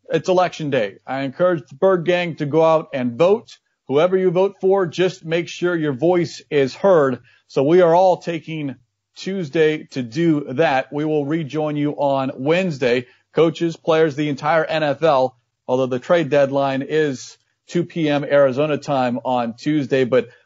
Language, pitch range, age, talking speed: English, 140-175 Hz, 40-59, 165 wpm